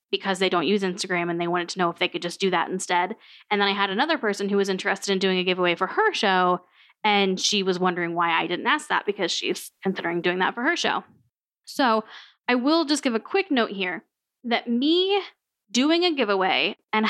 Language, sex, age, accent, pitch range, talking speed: English, female, 10-29, American, 190-260 Hz, 230 wpm